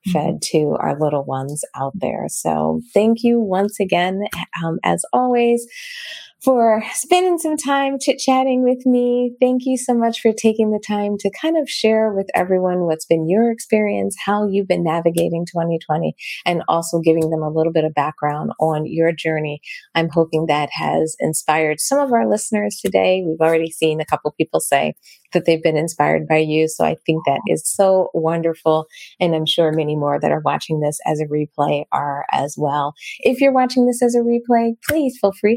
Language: English